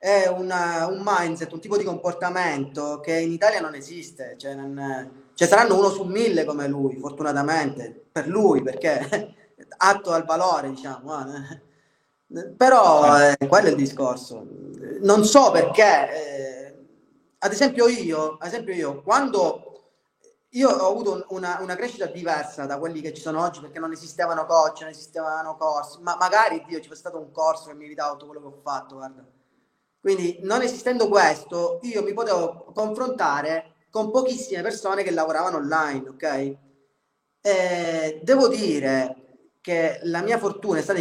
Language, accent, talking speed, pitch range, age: Italian, native, 160 wpm, 145-200 Hz, 20-39